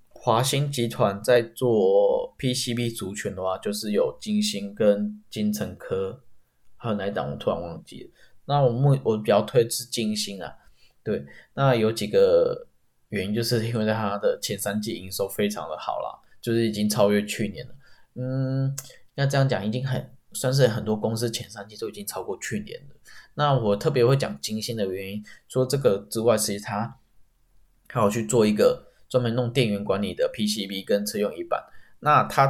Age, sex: 10-29, male